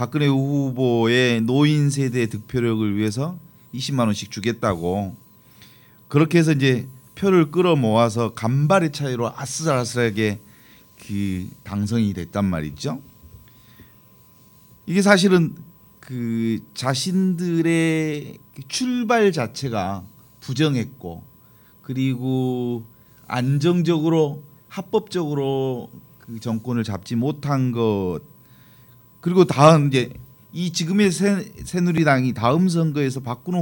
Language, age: Korean, 40-59